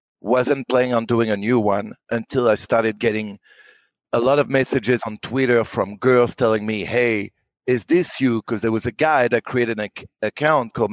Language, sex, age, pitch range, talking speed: English, male, 40-59, 110-135 Hz, 200 wpm